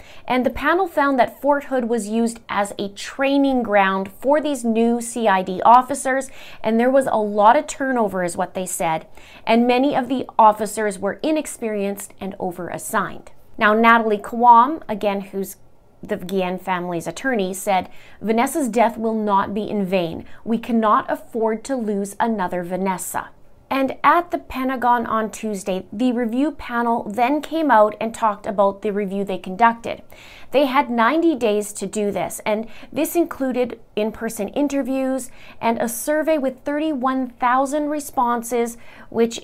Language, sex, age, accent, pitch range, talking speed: English, female, 30-49, American, 205-265 Hz, 150 wpm